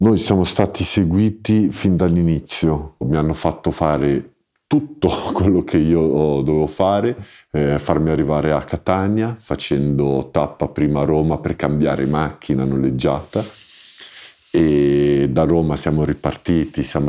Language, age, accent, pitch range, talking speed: Italian, 50-69, native, 70-85 Hz, 125 wpm